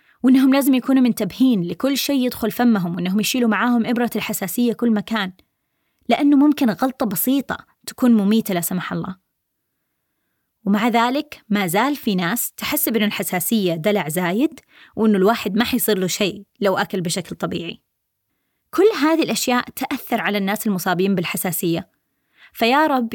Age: 20-39